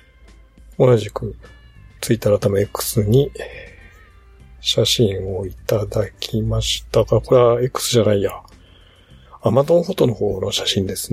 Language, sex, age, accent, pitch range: Japanese, male, 50-69, native, 100-130 Hz